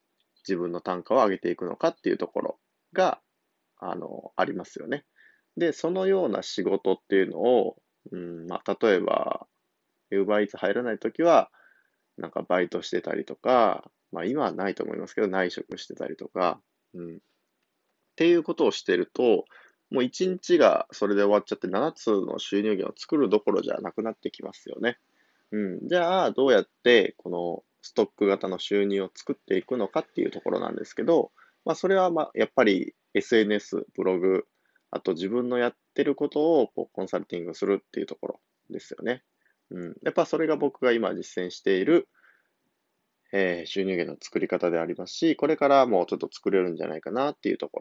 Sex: male